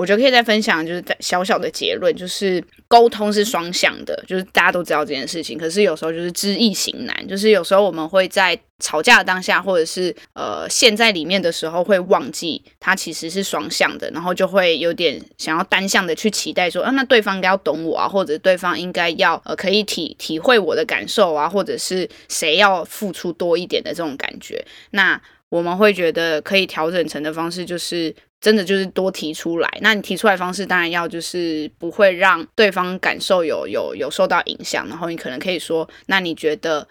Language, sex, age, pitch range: Chinese, female, 20-39, 170-210 Hz